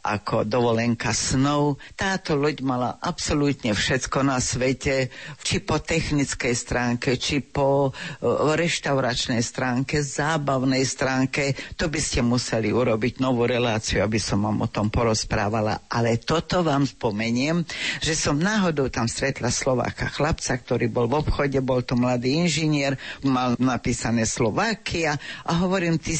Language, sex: Slovak, female